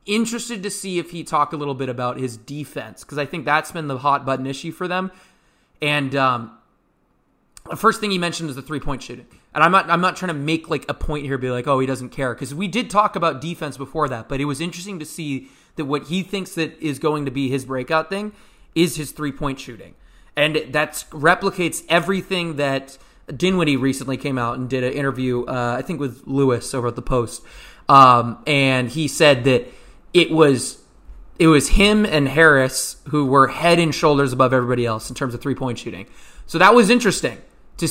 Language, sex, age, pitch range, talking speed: English, male, 20-39, 130-165 Hz, 215 wpm